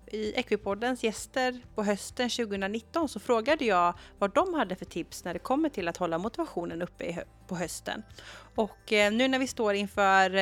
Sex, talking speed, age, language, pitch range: female, 175 wpm, 30-49, Swedish, 180-245 Hz